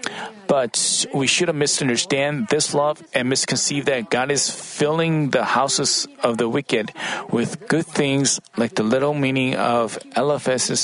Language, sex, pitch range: Korean, male, 140-195 Hz